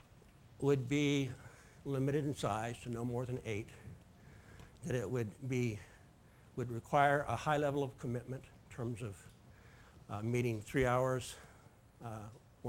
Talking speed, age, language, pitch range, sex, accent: 135 wpm, 60-79, English, 115-135 Hz, male, American